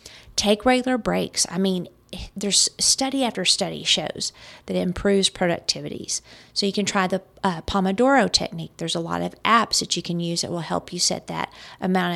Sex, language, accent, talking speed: female, English, American, 190 wpm